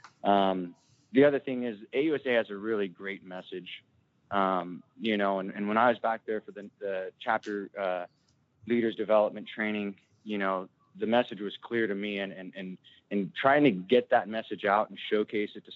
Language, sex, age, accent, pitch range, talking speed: English, male, 20-39, American, 100-120 Hz, 195 wpm